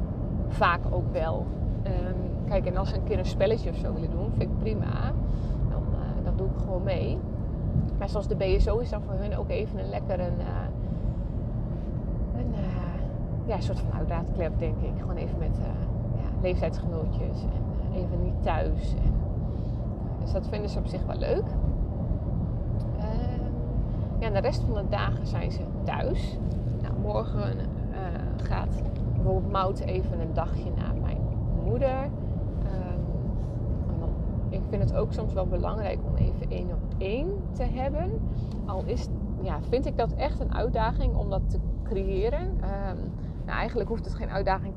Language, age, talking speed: Dutch, 30-49, 165 wpm